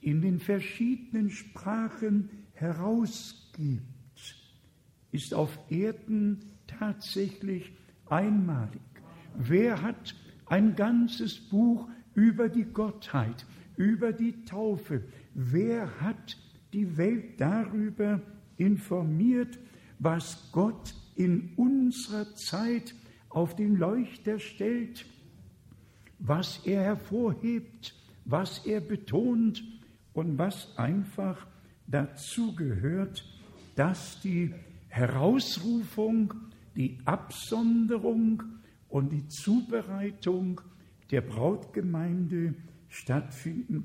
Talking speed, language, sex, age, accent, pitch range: 80 wpm, German, male, 60-79, German, 150-215 Hz